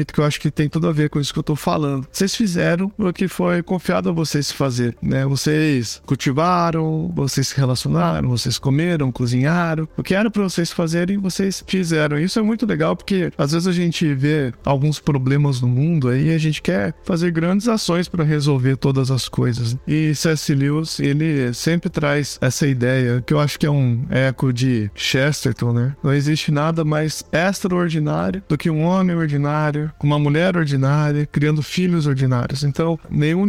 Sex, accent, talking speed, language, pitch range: male, Brazilian, 185 wpm, Portuguese, 135-165 Hz